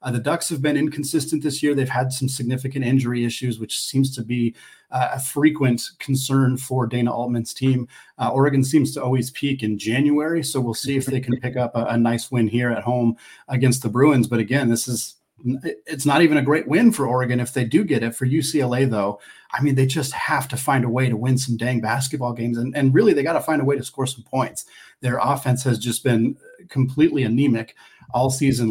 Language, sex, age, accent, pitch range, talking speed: English, male, 30-49, American, 120-135 Hz, 225 wpm